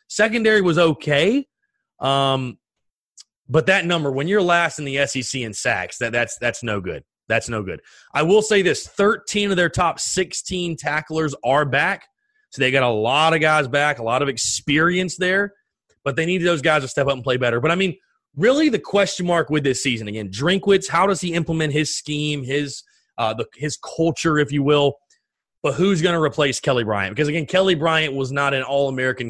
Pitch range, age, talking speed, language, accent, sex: 130-185 Hz, 30-49, 205 wpm, English, American, male